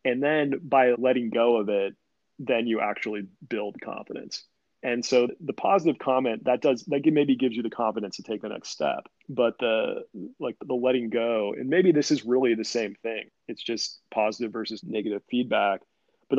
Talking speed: 190 wpm